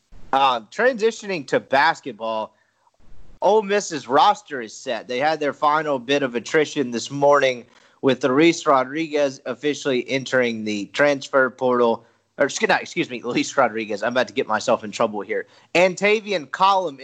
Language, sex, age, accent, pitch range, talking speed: English, male, 30-49, American, 125-175 Hz, 145 wpm